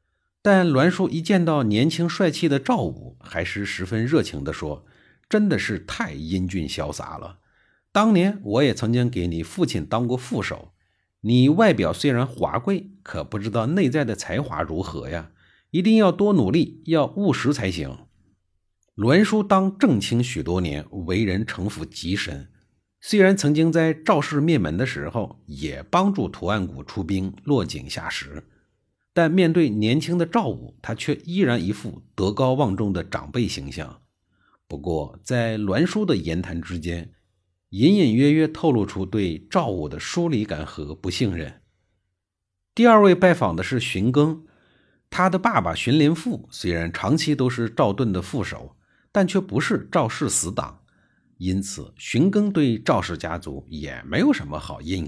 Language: Chinese